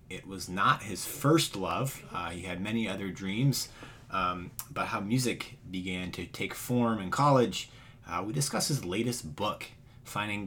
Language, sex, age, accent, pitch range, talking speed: English, male, 30-49, American, 90-120 Hz, 165 wpm